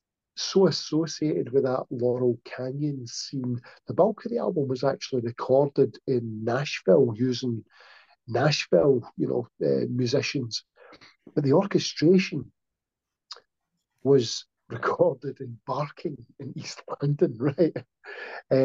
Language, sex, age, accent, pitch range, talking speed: English, male, 50-69, British, 125-150 Hz, 115 wpm